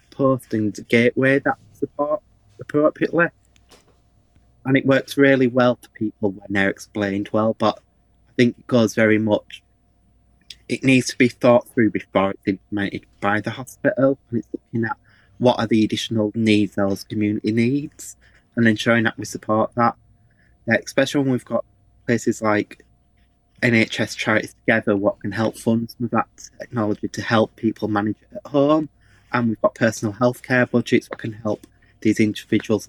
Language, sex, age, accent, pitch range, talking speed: English, male, 20-39, British, 105-120 Hz, 165 wpm